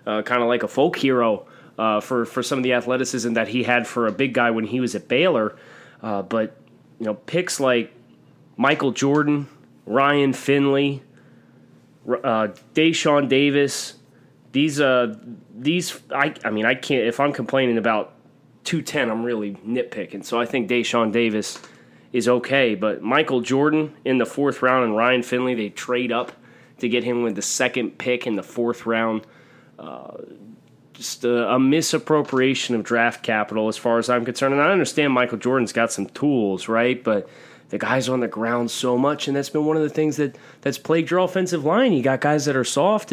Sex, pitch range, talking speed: male, 120-155 Hz, 190 wpm